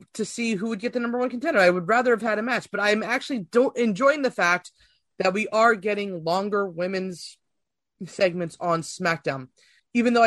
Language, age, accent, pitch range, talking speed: English, 30-49, American, 170-230 Hz, 195 wpm